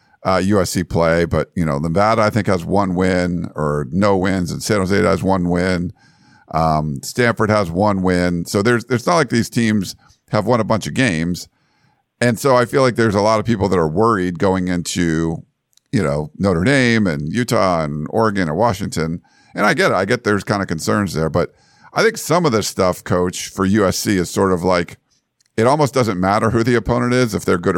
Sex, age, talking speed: male, 50-69, 215 wpm